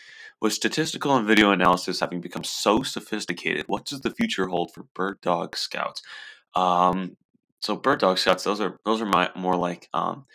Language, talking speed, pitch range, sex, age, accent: English, 180 wpm, 90-110 Hz, male, 20-39, American